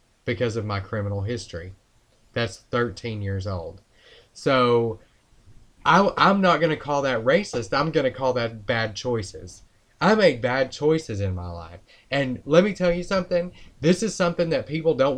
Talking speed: 170 wpm